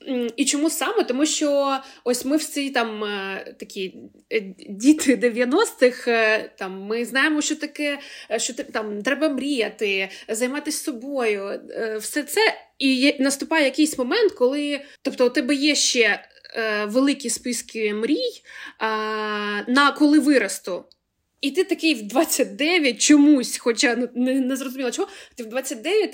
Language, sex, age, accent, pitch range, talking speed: Ukrainian, female, 20-39, native, 235-300 Hz, 125 wpm